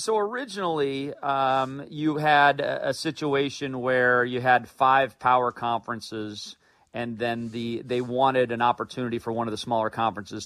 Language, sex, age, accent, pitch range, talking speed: English, male, 40-59, American, 110-130 Hz, 150 wpm